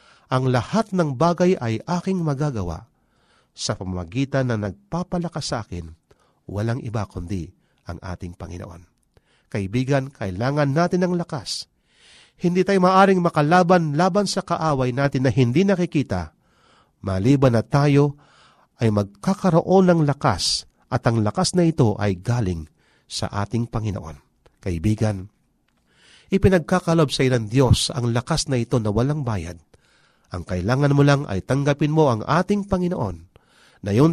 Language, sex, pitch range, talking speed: Filipino, male, 105-170 Hz, 130 wpm